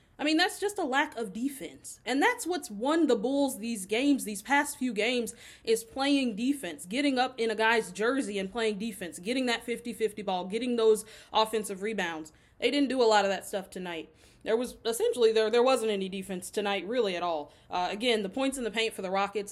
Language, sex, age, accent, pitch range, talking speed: English, female, 20-39, American, 195-240 Hz, 220 wpm